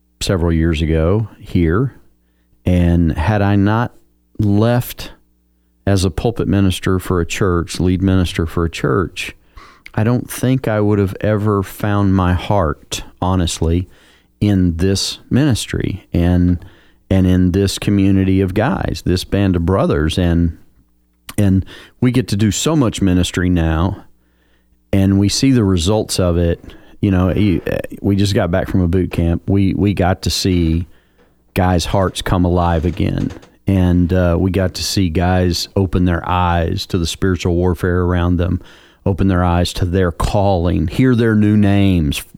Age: 40-59